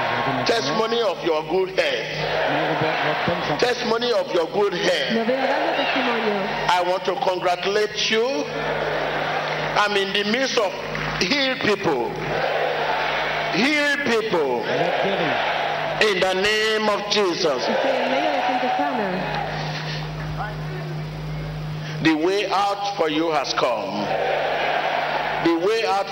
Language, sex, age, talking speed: English, male, 50-69, 90 wpm